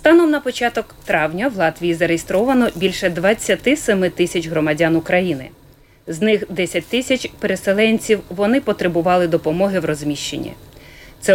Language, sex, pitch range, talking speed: Ukrainian, female, 165-235 Hz, 120 wpm